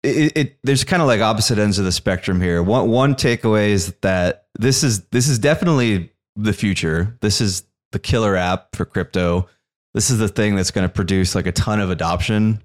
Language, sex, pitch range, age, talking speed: English, male, 85-105 Hz, 20-39, 210 wpm